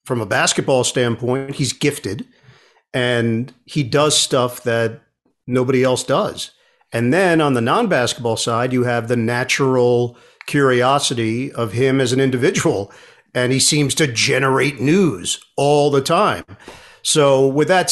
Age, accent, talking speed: 50-69, American, 140 wpm